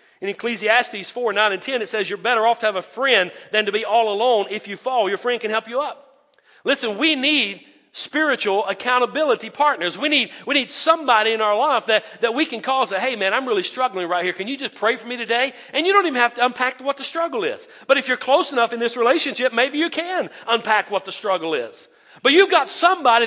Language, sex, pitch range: English, male, 200-285 Hz